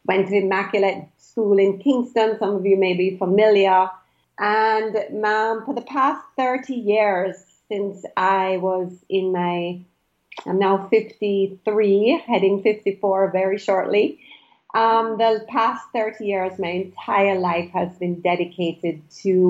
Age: 40-59